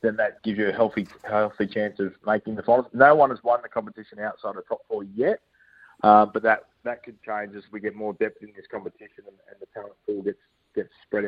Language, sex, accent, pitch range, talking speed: English, male, Australian, 105-125 Hz, 240 wpm